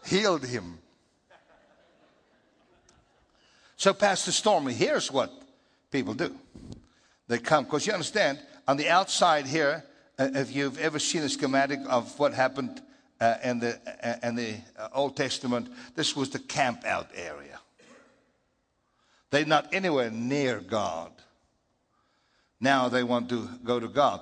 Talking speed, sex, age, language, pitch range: 135 wpm, male, 60-79, English, 120-145 Hz